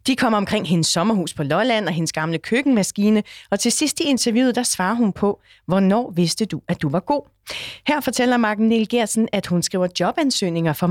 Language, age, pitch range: Danish, 30-49, 175-235 Hz